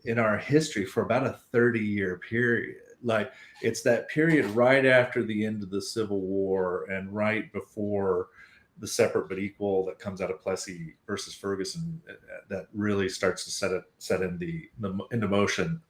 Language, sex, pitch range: English, male, 100-125 Hz